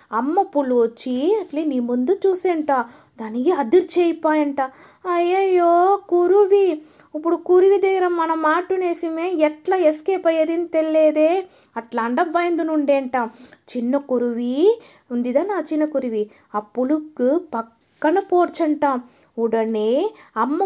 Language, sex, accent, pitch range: Telugu, female, native, 255-350 Hz